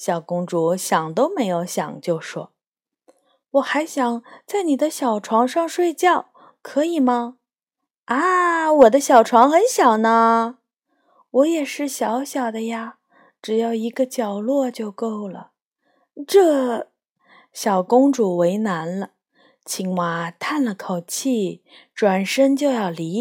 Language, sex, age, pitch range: Chinese, female, 20-39, 190-285 Hz